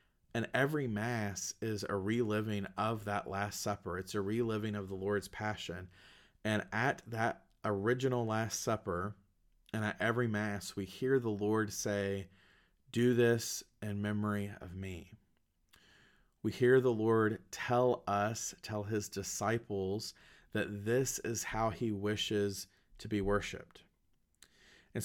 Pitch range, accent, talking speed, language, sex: 100-115 Hz, American, 135 wpm, English, male